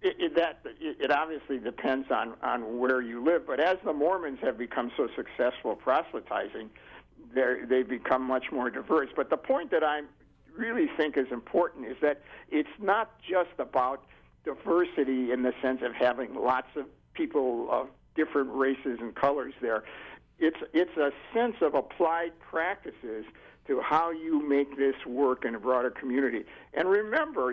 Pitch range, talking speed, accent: 130-165 Hz, 165 wpm, American